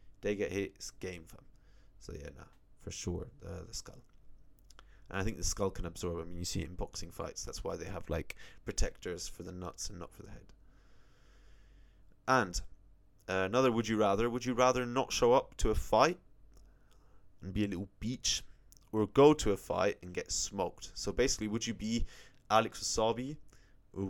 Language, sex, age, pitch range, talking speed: English, male, 20-39, 95-115 Hz, 195 wpm